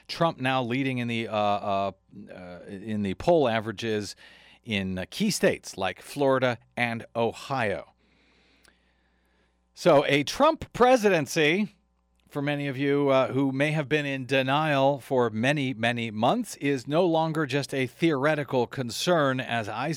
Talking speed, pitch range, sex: 140 wpm, 115-155 Hz, male